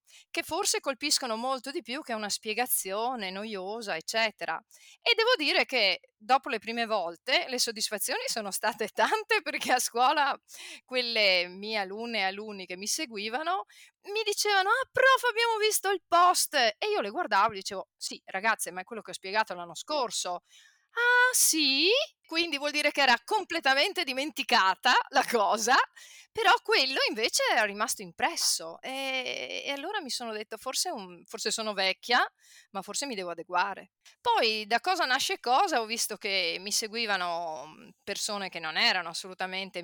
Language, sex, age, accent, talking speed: Italian, female, 30-49, native, 160 wpm